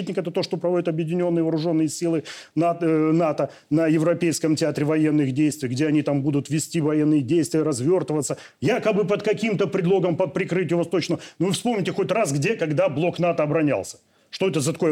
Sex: male